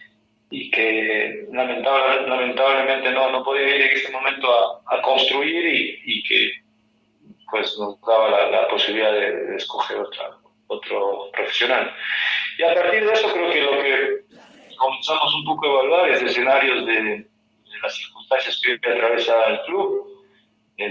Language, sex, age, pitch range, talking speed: Spanish, male, 40-59, 115-150 Hz, 150 wpm